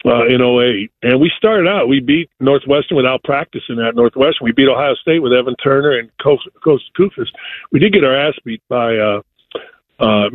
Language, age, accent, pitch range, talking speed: English, 50-69, American, 125-185 Hz, 195 wpm